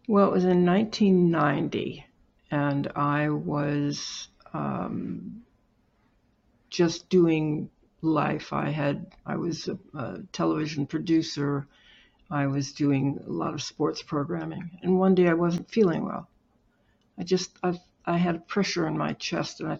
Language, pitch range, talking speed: English, 150-185 Hz, 145 wpm